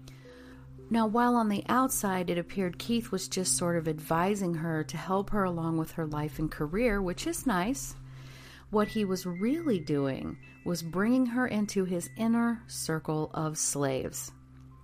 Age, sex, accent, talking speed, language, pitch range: 40-59, female, American, 160 wpm, English, 145-195 Hz